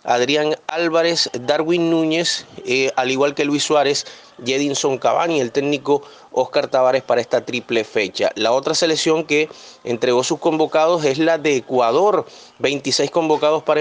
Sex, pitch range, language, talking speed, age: male, 140-165 Hz, Spanish, 155 wpm, 30-49